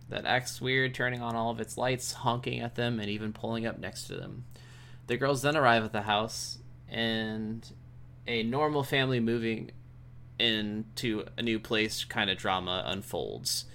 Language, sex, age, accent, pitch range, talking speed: English, male, 20-39, American, 105-125 Hz, 170 wpm